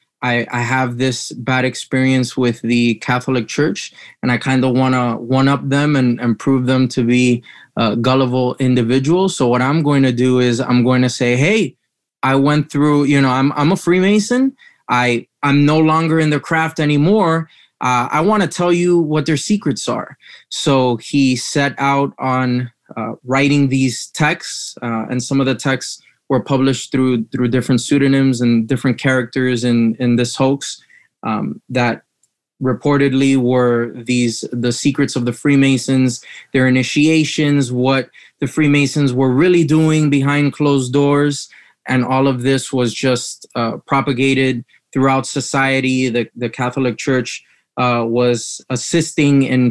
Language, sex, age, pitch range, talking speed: English, male, 20-39, 125-140 Hz, 165 wpm